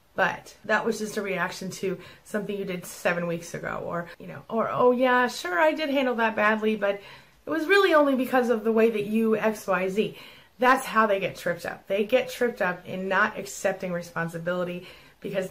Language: English